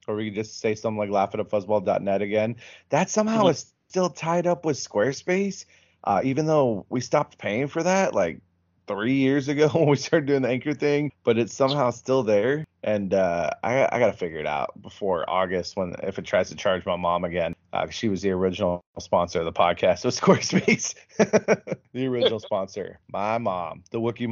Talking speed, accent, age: 190 wpm, American, 20-39